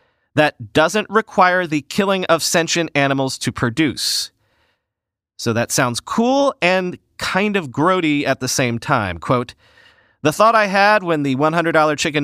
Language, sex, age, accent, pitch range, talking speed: English, male, 40-59, American, 135-170 Hz, 150 wpm